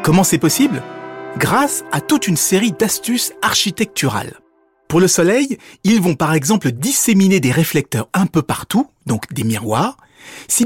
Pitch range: 135-210 Hz